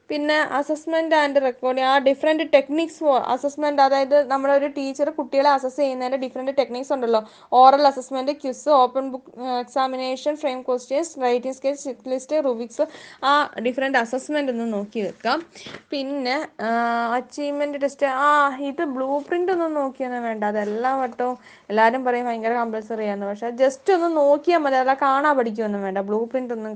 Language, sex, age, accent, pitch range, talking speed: Malayalam, female, 20-39, native, 235-285 Hz, 145 wpm